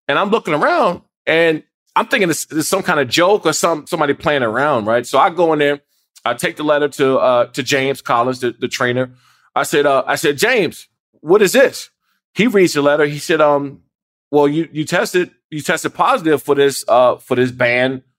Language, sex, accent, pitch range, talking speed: English, male, American, 130-170 Hz, 220 wpm